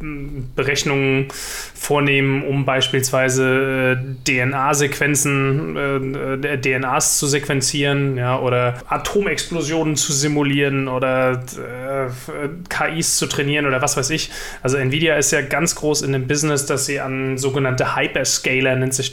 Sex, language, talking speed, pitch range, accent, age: male, German, 120 wpm, 130-145 Hz, German, 30-49